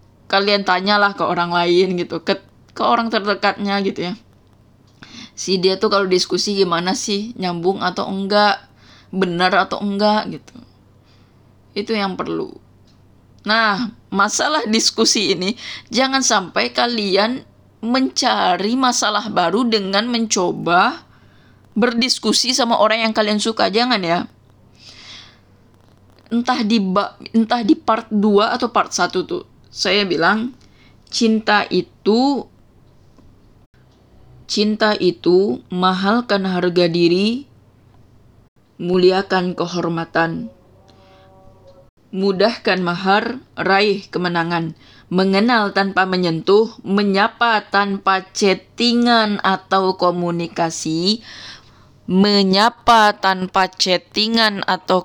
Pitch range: 170-215 Hz